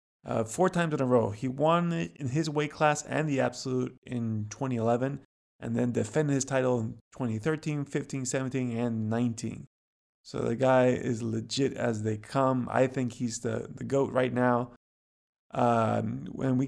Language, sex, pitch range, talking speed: English, male, 120-140 Hz, 170 wpm